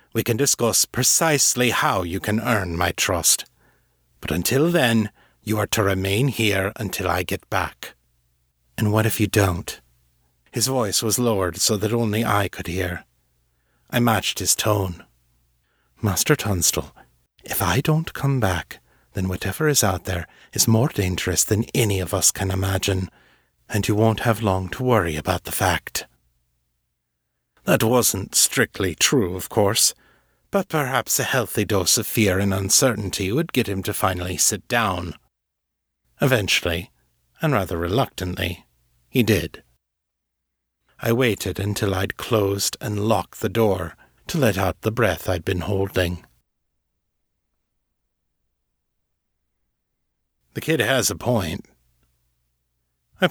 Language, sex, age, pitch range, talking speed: English, male, 60-79, 85-110 Hz, 140 wpm